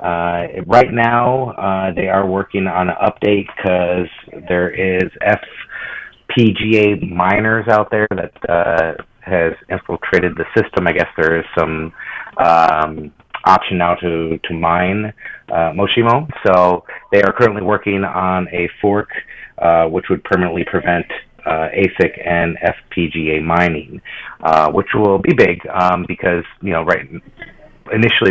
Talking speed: 140 wpm